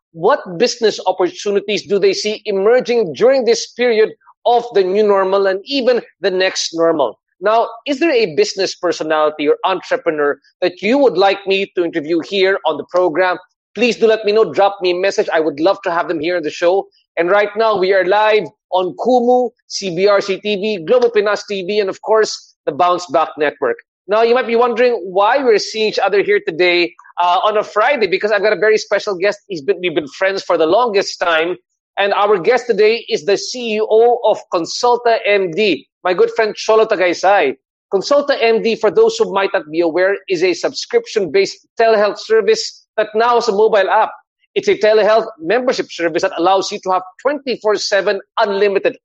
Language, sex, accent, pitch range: English, male, Filipino, 185-240 Hz